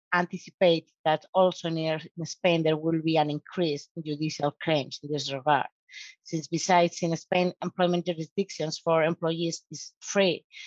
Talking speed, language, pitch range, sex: 145 wpm, English, 155-185 Hz, female